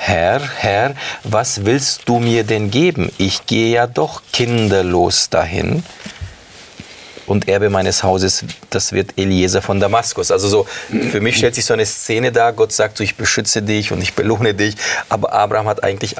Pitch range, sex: 95-120 Hz, male